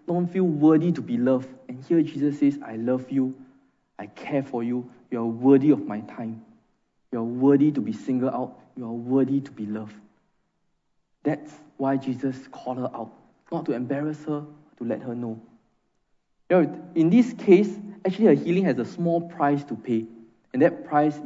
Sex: male